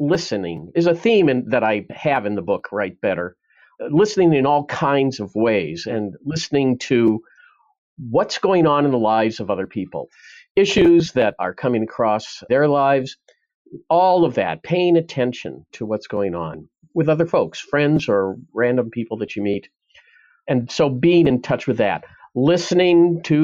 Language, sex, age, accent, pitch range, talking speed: English, male, 50-69, American, 115-180 Hz, 165 wpm